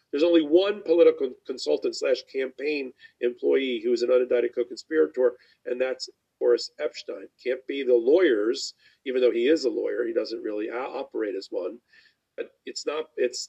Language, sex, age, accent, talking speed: English, male, 40-59, American, 165 wpm